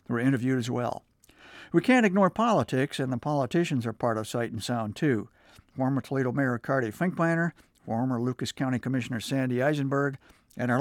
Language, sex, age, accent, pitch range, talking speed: English, male, 60-79, American, 125-155 Hz, 170 wpm